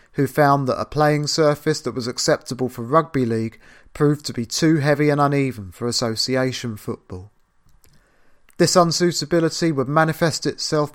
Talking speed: 150 wpm